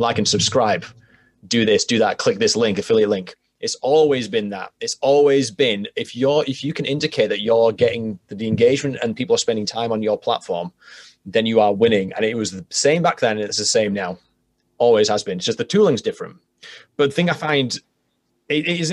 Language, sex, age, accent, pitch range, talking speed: English, male, 20-39, British, 110-155 Hz, 230 wpm